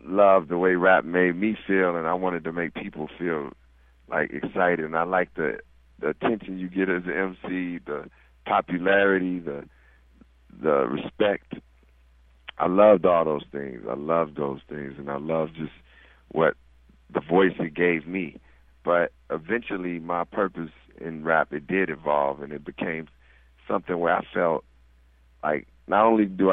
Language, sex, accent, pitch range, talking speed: English, male, American, 65-90 Hz, 160 wpm